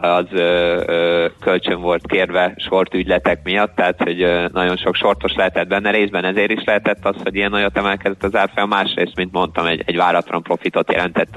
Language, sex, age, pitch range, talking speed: Hungarian, male, 20-39, 85-100 Hz, 190 wpm